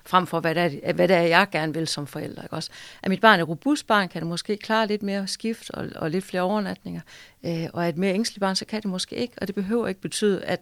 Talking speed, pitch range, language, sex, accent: 270 wpm, 160-195 Hz, Danish, female, native